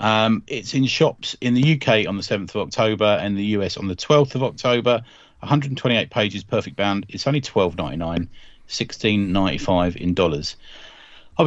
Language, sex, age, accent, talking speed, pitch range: English, male, 40-59, British, 175 wpm, 90-115 Hz